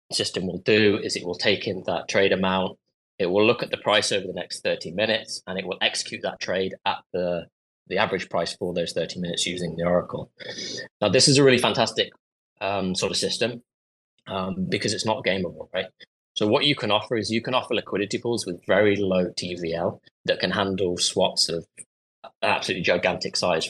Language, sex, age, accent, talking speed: English, male, 20-39, British, 200 wpm